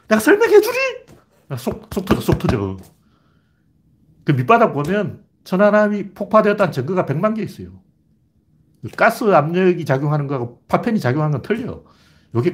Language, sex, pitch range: Korean, male, 145-210 Hz